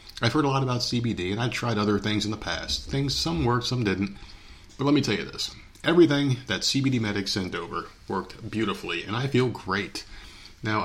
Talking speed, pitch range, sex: 220 wpm, 95-120 Hz, male